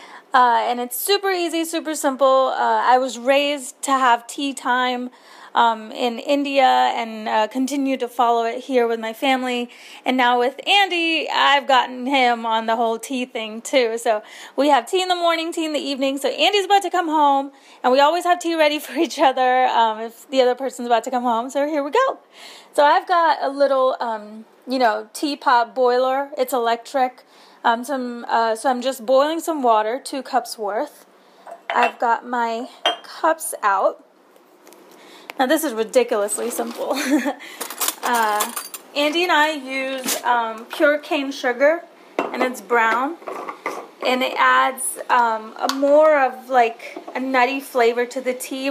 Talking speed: 170 wpm